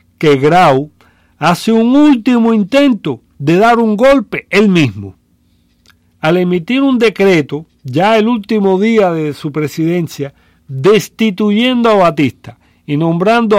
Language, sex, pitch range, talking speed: English, male, 120-190 Hz, 125 wpm